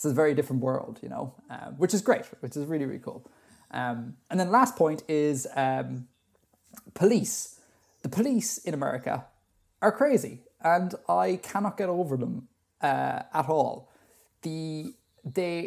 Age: 20-39